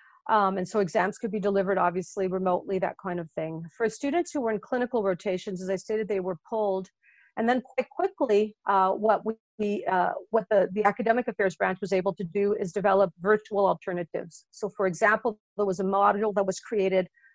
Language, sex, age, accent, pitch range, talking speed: English, female, 40-59, American, 195-230 Hz, 195 wpm